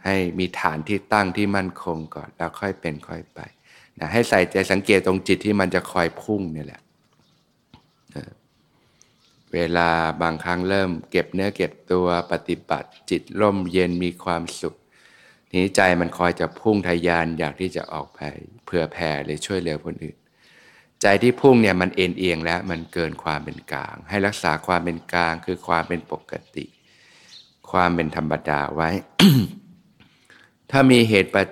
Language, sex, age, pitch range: Thai, male, 60-79, 85-100 Hz